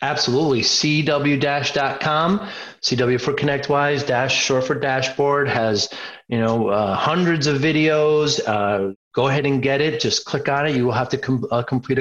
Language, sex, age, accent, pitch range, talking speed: English, male, 30-49, American, 110-140 Hz, 165 wpm